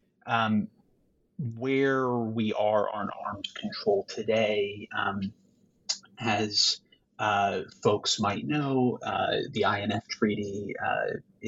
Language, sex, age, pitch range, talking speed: English, male, 30-49, 100-120 Hz, 100 wpm